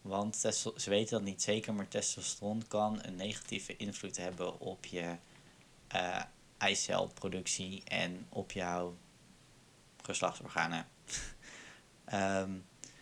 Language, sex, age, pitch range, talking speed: Dutch, male, 20-39, 95-110 Hz, 100 wpm